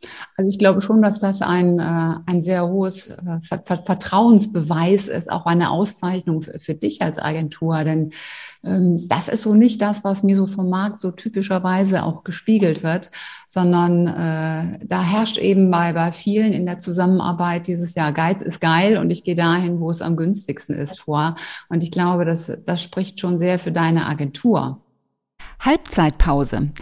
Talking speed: 160 wpm